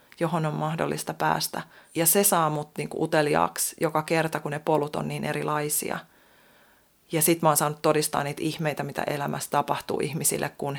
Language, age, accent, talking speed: Finnish, 30-49, native, 180 wpm